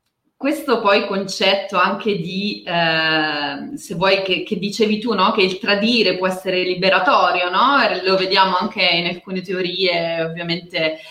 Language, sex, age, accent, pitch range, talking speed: Italian, female, 20-39, native, 175-220 Hz, 135 wpm